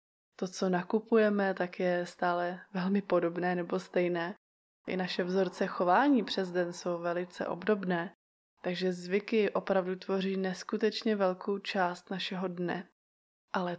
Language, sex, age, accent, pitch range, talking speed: Czech, female, 20-39, native, 180-205 Hz, 125 wpm